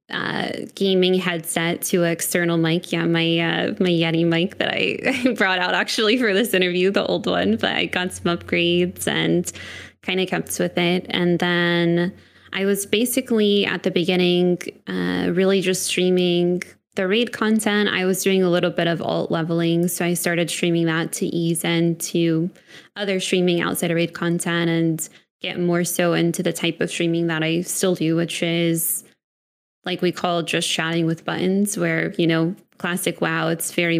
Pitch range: 165-185 Hz